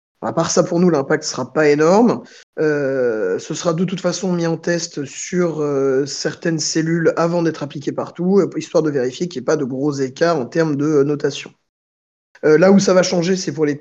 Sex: male